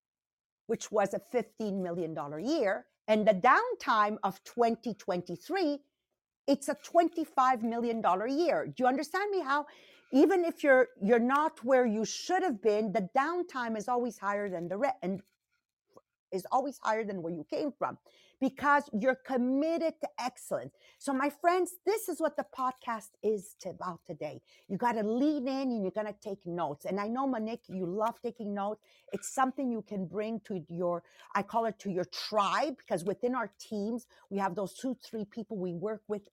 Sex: female